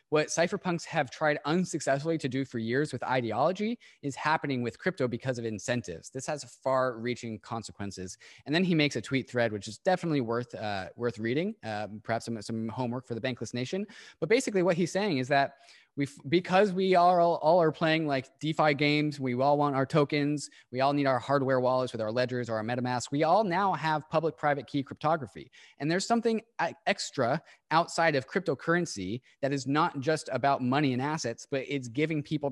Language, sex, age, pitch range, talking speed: English, male, 20-39, 120-155 Hz, 195 wpm